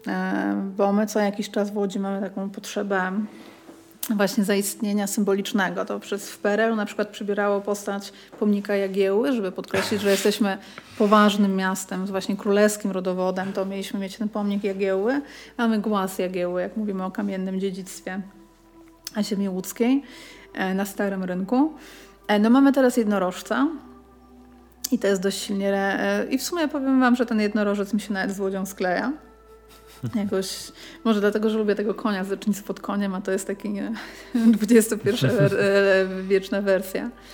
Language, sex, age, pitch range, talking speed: Polish, female, 30-49, 195-225 Hz, 150 wpm